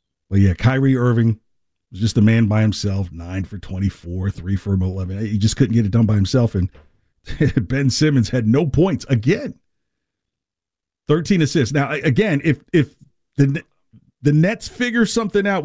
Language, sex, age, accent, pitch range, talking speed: English, male, 50-69, American, 100-145 Hz, 165 wpm